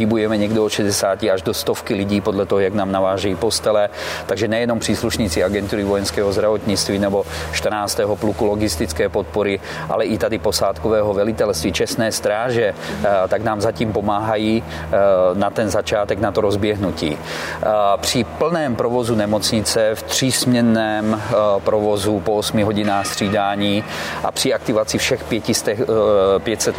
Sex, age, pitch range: male, 40-59, 100-115 Hz